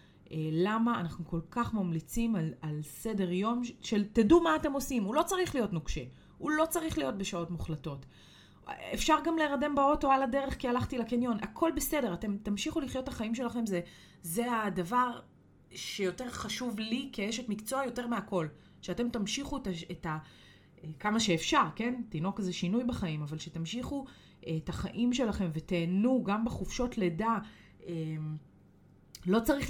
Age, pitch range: 30-49, 170-235 Hz